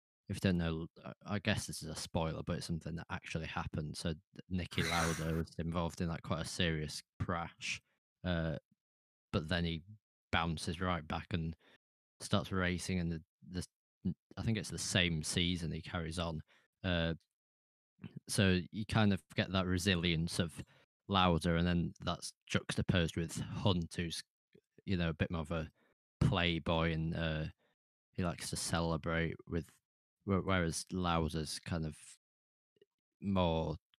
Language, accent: English, British